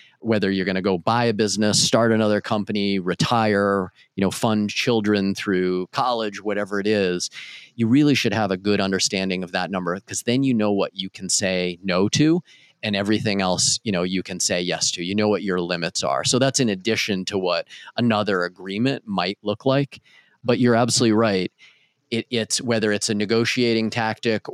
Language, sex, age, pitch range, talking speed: English, male, 30-49, 95-115 Hz, 195 wpm